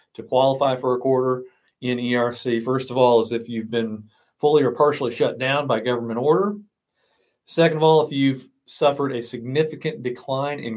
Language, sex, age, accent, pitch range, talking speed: English, male, 40-59, American, 120-155 Hz, 180 wpm